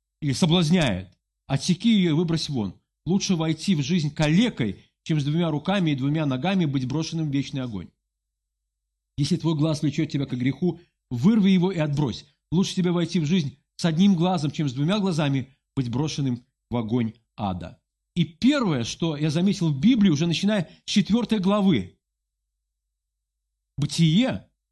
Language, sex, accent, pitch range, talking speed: Russian, male, native, 135-190 Hz, 160 wpm